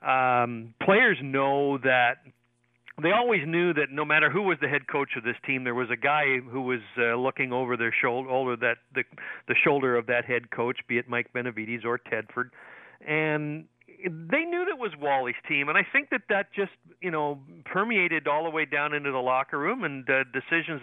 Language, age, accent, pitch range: English, 50-69, American, 125-160 Hz